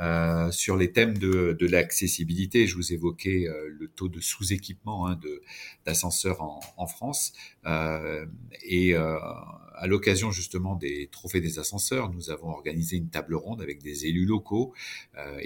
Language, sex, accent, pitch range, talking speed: French, male, French, 80-95 Hz, 165 wpm